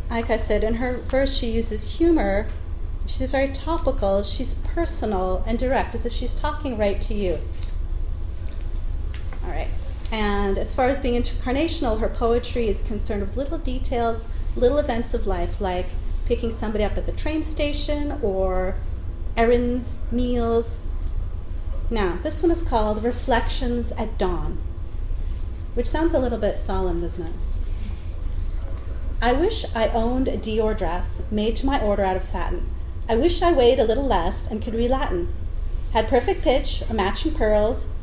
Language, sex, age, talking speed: English, female, 40-59, 160 wpm